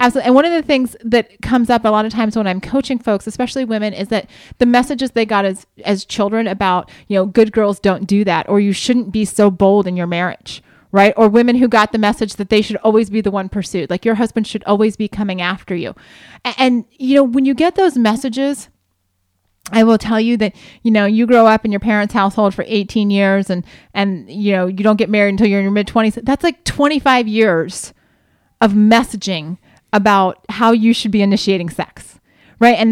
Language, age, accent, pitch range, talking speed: English, 30-49, American, 195-235 Hz, 225 wpm